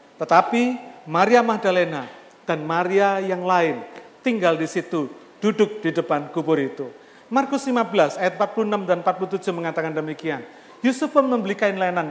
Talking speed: 135 wpm